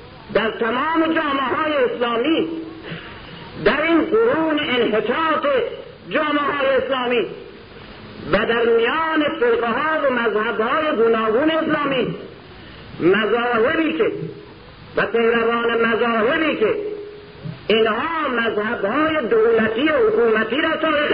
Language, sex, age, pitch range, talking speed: Persian, male, 50-69, 225-315 Hz, 90 wpm